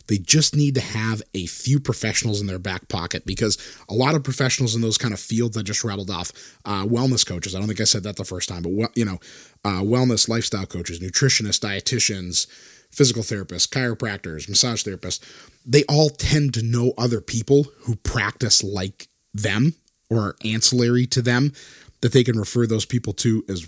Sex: male